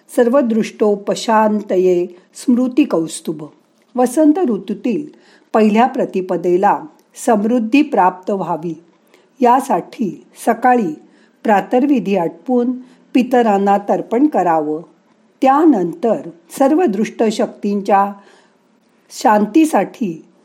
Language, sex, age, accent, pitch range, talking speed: Marathi, female, 50-69, native, 185-250 Hz, 60 wpm